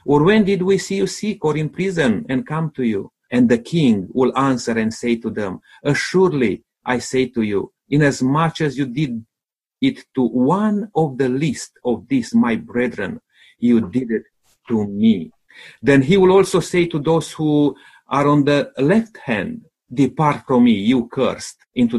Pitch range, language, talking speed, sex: 130-200 Hz, English, 180 wpm, male